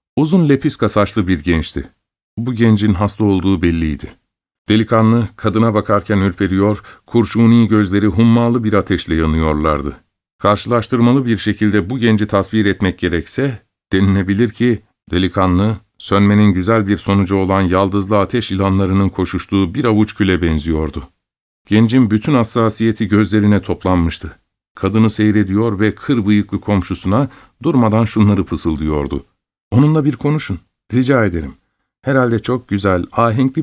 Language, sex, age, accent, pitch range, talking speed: Turkish, male, 50-69, native, 95-115 Hz, 120 wpm